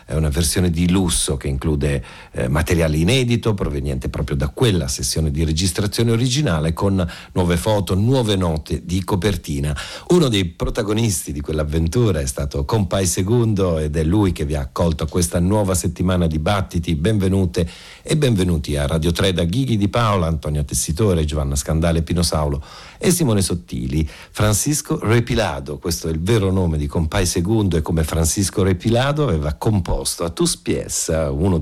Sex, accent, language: male, native, Italian